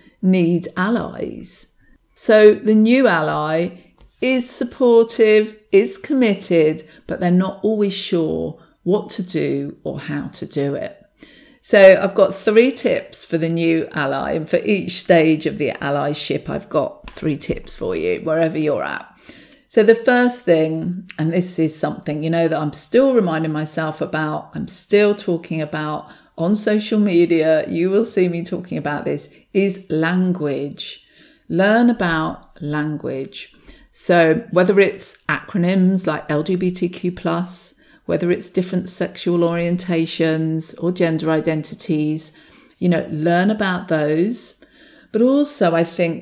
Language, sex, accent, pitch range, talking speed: English, female, British, 160-205 Hz, 140 wpm